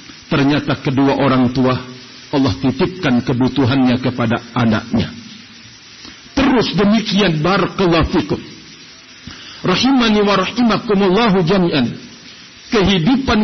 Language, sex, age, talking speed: Indonesian, male, 50-69, 80 wpm